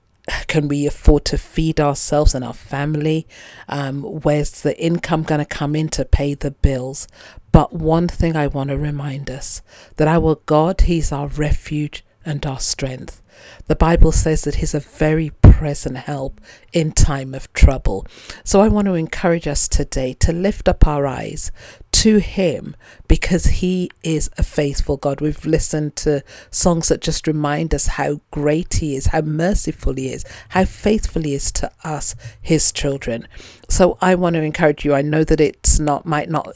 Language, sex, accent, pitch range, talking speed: English, female, British, 135-160 Hz, 180 wpm